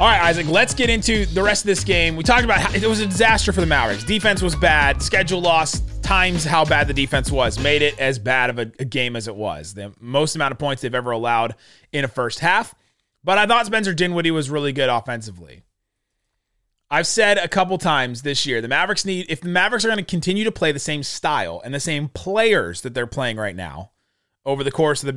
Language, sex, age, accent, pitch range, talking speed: English, male, 30-49, American, 120-170 Hz, 240 wpm